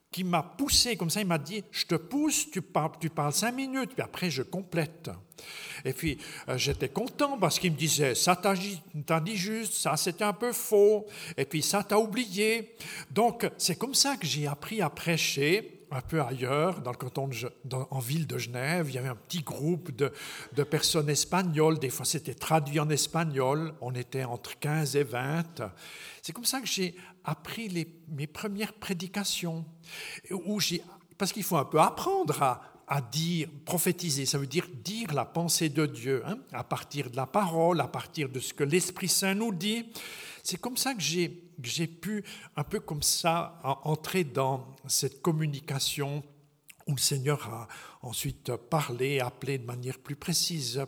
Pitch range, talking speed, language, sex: 140-190 Hz, 185 wpm, French, male